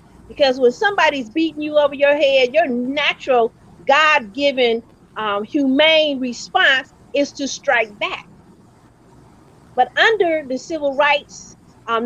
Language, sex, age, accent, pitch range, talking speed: English, female, 40-59, American, 245-325 Hz, 115 wpm